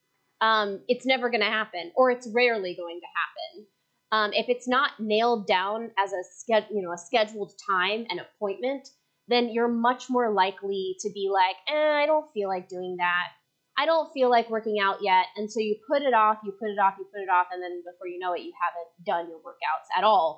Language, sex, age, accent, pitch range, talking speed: English, female, 20-39, American, 185-235 Hz, 225 wpm